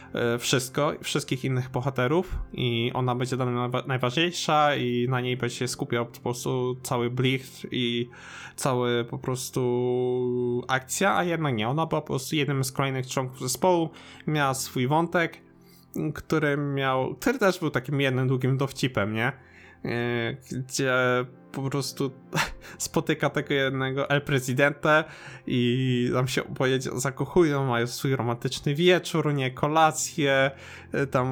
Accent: native